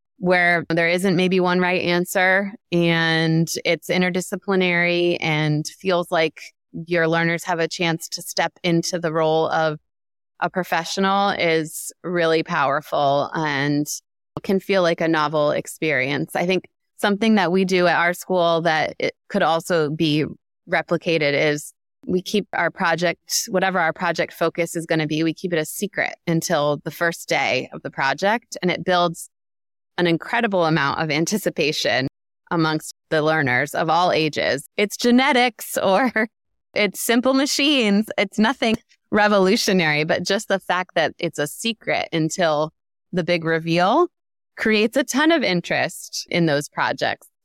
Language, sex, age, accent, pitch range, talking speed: English, female, 20-39, American, 160-195 Hz, 150 wpm